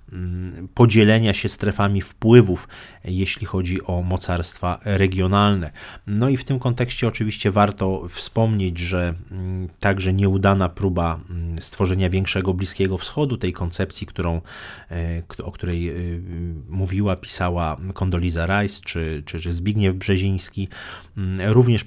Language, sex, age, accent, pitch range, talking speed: Polish, male, 30-49, native, 85-100 Hz, 110 wpm